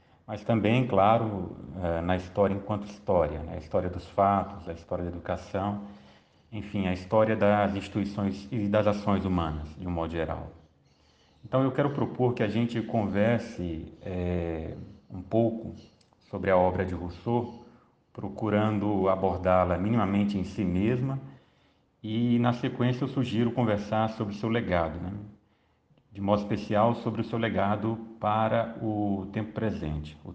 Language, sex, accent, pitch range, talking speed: Portuguese, male, Brazilian, 90-115 Hz, 145 wpm